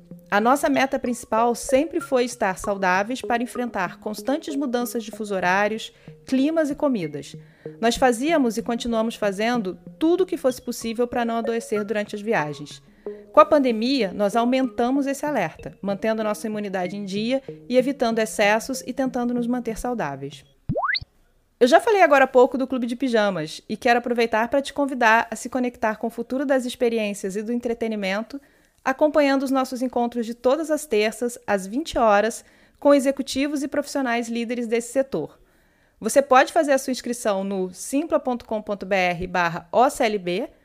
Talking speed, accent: 160 wpm, Brazilian